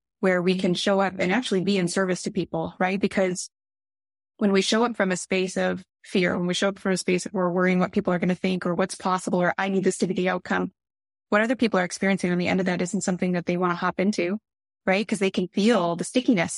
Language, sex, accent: English, female, American